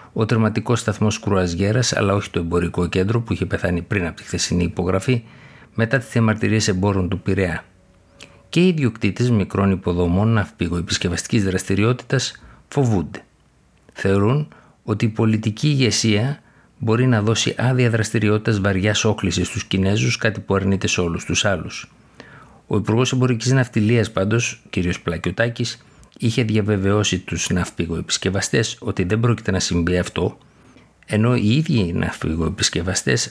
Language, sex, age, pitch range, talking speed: Greek, male, 50-69, 90-115 Hz, 135 wpm